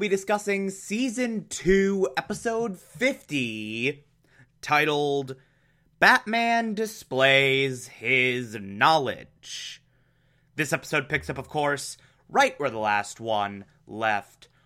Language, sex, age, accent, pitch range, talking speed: English, male, 30-49, American, 140-200 Hz, 95 wpm